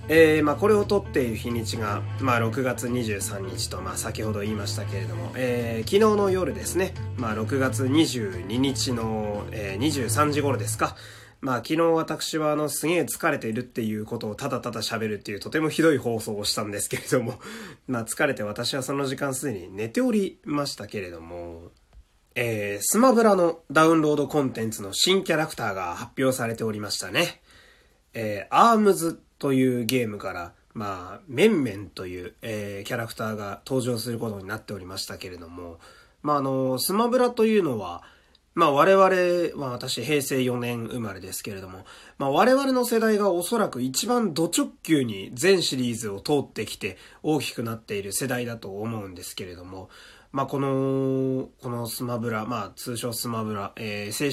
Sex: male